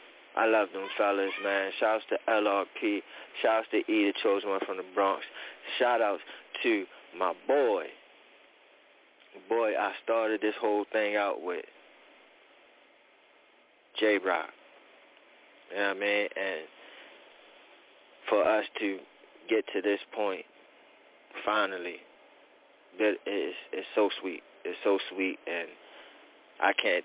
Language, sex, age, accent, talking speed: English, male, 30-49, American, 125 wpm